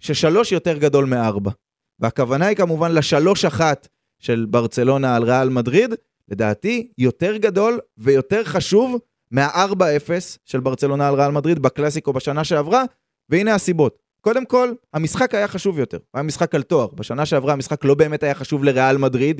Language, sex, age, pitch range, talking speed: Hebrew, male, 20-39, 130-185 Hz, 155 wpm